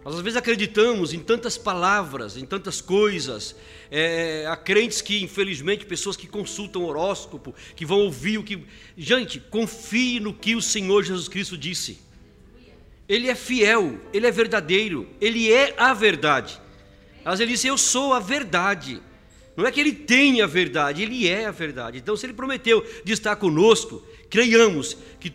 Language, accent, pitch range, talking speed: Portuguese, Brazilian, 180-230 Hz, 165 wpm